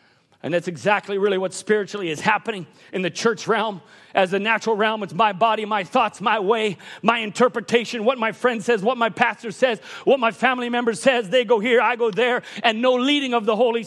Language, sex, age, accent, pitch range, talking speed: English, male, 40-59, American, 205-260 Hz, 215 wpm